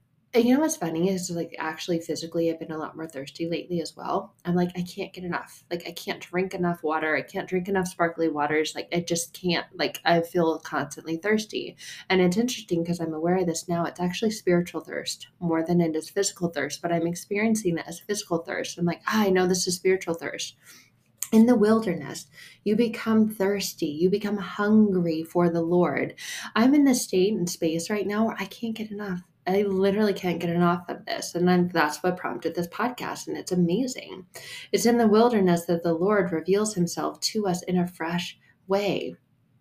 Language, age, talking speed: English, 20-39, 205 wpm